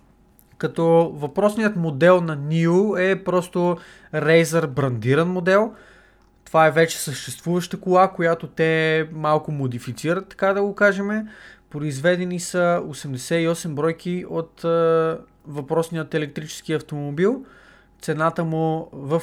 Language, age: Bulgarian, 20-39